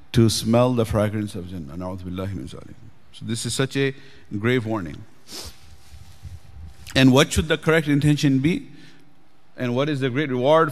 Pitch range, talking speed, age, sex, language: 115-145 Hz, 145 wpm, 50-69, male, English